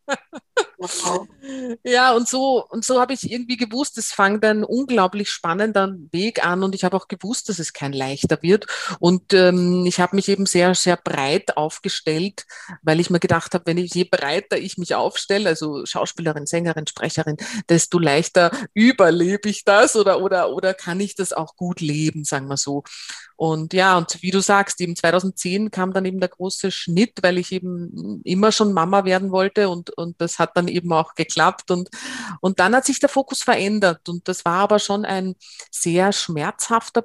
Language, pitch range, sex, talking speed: German, 175-215 Hz, female, 185 wpm